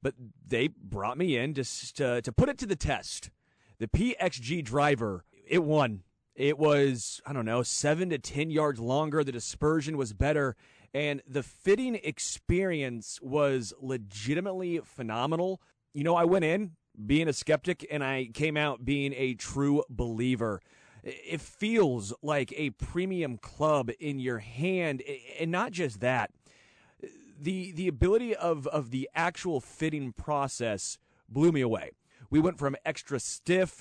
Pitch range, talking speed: 130-155 Hz, 150 wpm